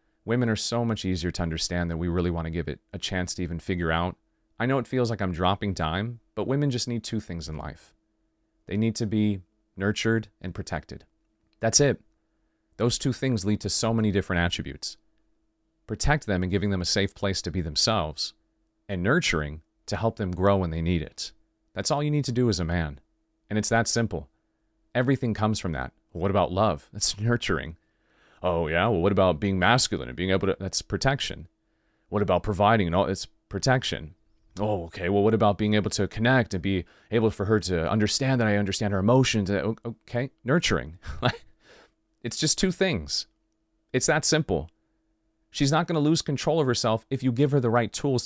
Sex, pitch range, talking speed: male, 90-115 Hz, 205 wpm